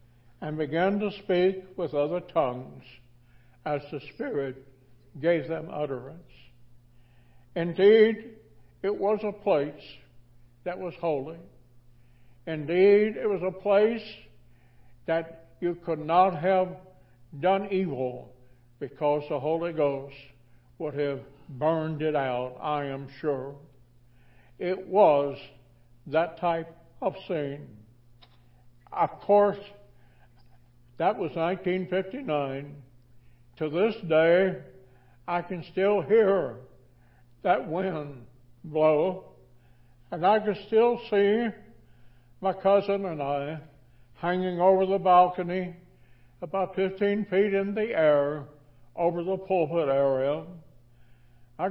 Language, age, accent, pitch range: English, 60-79, American, 125-185 Hz